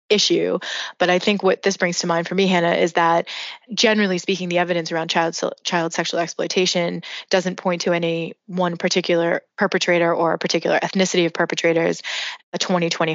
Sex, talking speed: female, 175 wpm